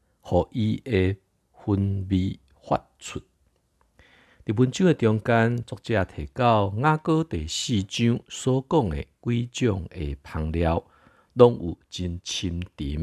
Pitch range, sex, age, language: 80-115 Hz, male, 50-69, Chinese